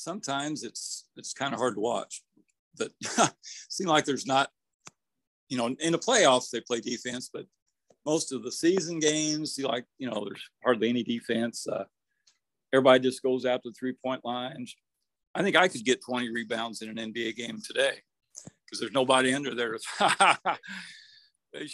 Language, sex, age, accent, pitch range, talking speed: English, male, 50-69, American, 120-150 Hz, 170 wpm